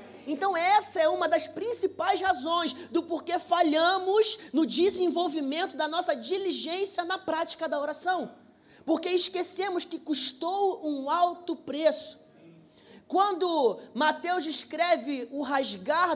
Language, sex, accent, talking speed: Portuguese, male, Brazilian, 115 wpm